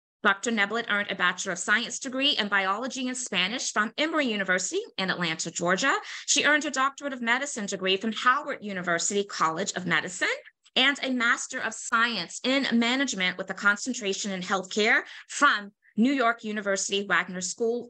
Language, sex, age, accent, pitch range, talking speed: English, female, 30-49, American, 195-255 Hz, 165 wpm